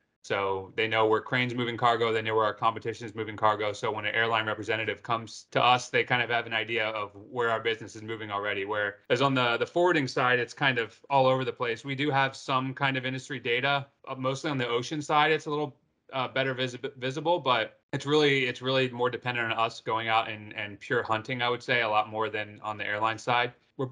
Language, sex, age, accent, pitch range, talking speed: English, male, 30-49, American, 110-135 Hz, 240 wpm